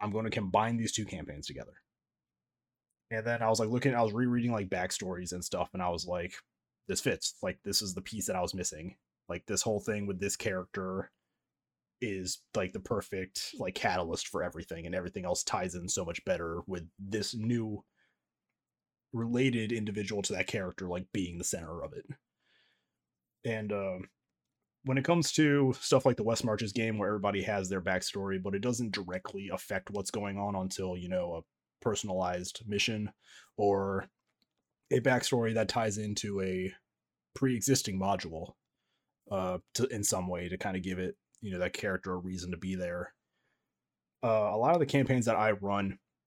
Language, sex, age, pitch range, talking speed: English, male, 30-49, 90-110 Hz, 185 wpm